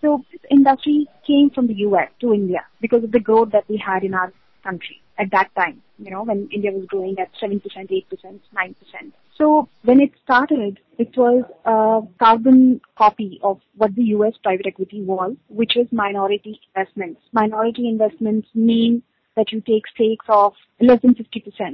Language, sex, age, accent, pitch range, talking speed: English, female, 30-49, Indian, 200-240 Hz, 170 wpm